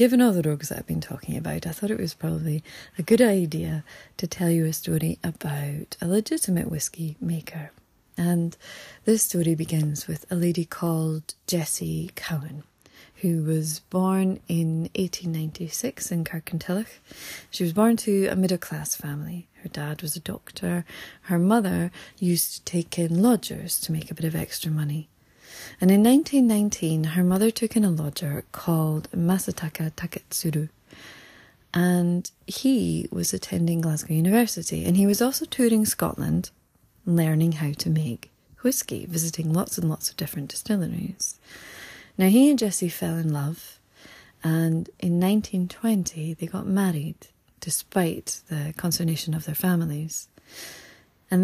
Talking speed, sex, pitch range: 150 wpm, female, 160-190 Hz